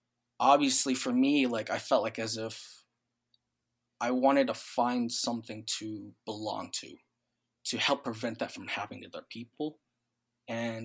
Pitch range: 115-165 Hz